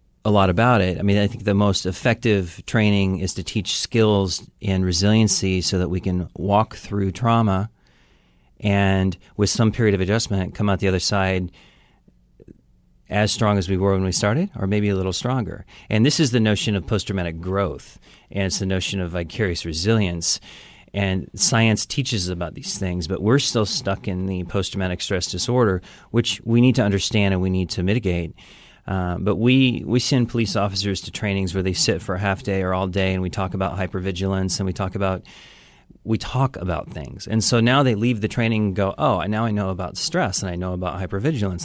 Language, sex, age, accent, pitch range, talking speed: English, male, 40-59, American, 95-115 Hz, 205 wpm